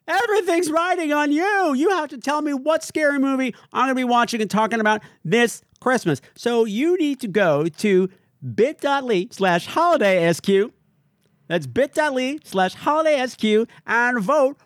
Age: 50-69